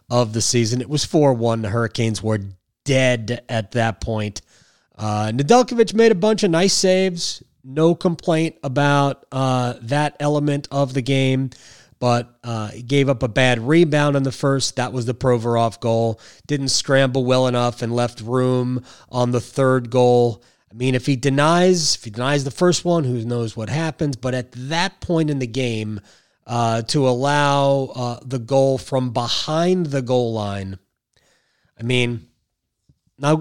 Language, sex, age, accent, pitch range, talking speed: English, male, 30-49, American, 120-155 Hz, 165 wpm